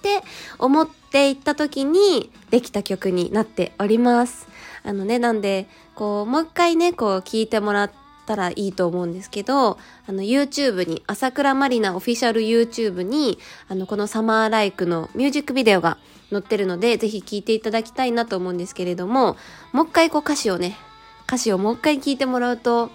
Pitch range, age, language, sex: 210-290 Hz, 20-39, Japanese, female